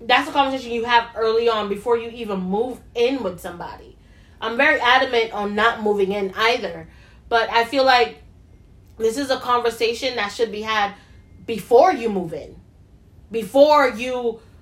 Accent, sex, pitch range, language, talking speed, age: American, female, 195-245 Hz, English, 165 wpm, 20-39